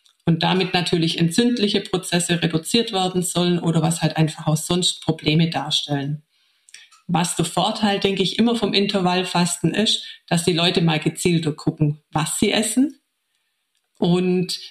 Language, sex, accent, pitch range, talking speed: German, female, German, 170-215 Hz, 145 wpm